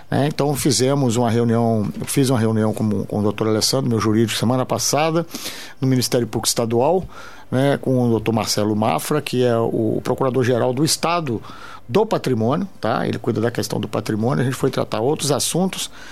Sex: male